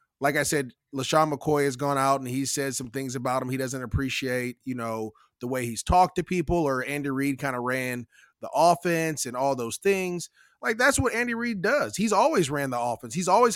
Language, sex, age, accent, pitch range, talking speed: English, male, 20-39, American, 140-180 Hz, 225 wpm